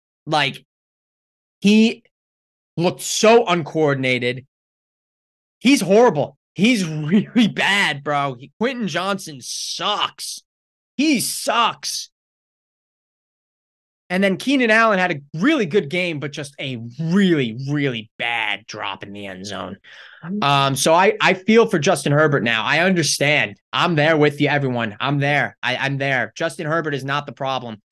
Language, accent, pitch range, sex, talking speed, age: English, American, 140-200 Hz, male, 140 wpm, 20-39